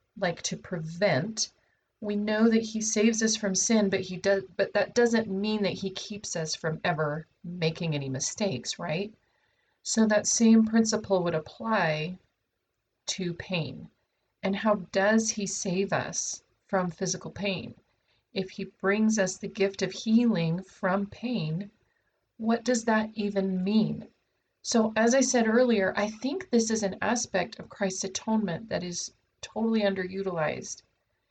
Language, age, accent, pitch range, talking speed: English, 30-49, American, 185-220 Hz, 150 wpm